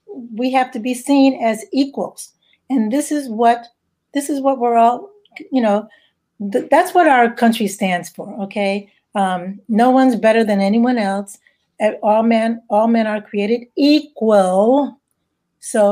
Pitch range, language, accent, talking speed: 205-265 Hz, English, American, 155 wpm